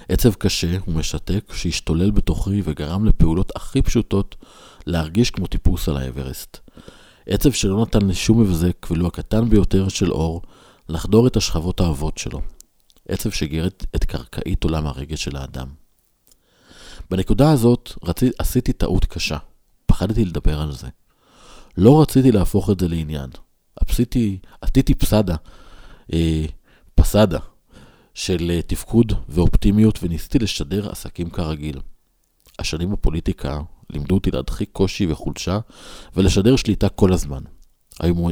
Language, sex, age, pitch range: Hebrew, male, 50-69, 80-105 Hz